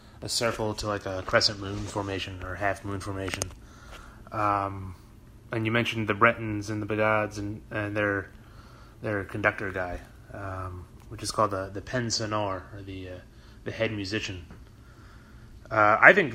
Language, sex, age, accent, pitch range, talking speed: English, male, 30-49, American, 95-110 Hz, 160 wpm